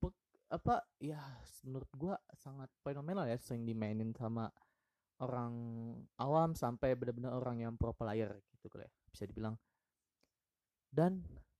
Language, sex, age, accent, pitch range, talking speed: Indonesian, male, 20-39, native, 115-155 Hz, 120 wpm